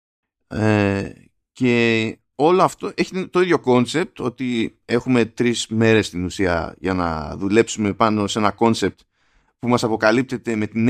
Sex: male